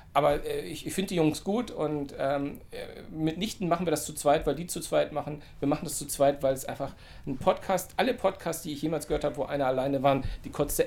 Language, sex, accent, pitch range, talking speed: German, male, German, 140-165 Hz, 245 wpm